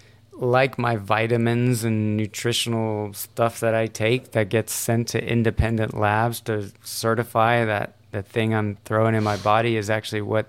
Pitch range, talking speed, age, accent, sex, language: 105-120 Hz, 160 wpm, 30-49, American, male, English